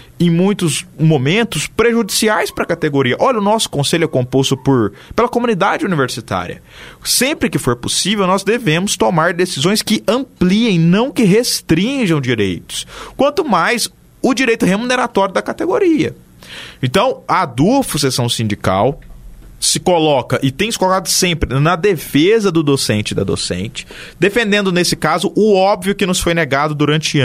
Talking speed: 145 wpm